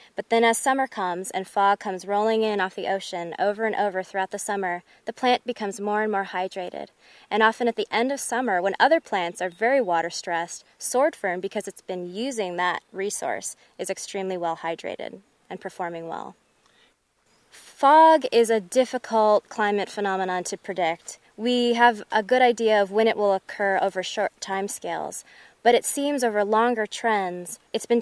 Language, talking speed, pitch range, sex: English, 180 wpm, 185-225 Hz, female